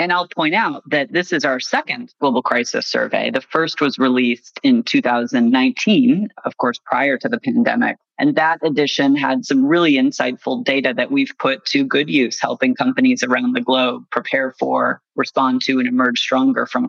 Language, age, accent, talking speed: English, 30-49, American, 180 wpm